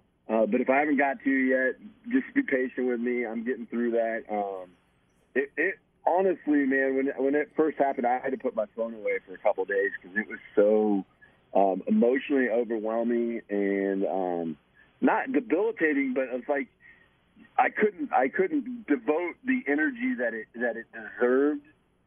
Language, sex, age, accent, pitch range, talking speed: English, male, 40-59, American, 100-140 Hz, 175 wpm